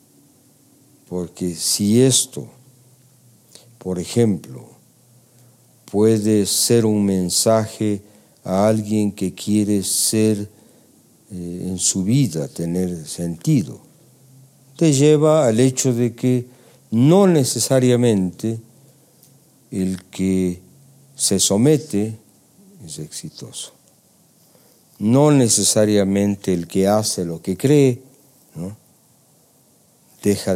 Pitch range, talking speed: 100-135 Hz, 85 wpm